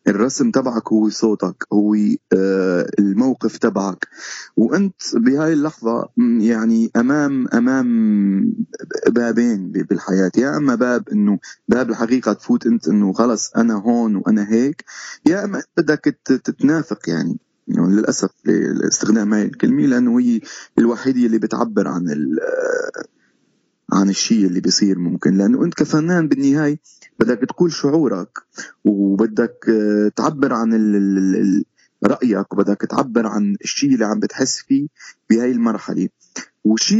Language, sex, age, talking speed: Arabic, male, 30-49, 120 wpm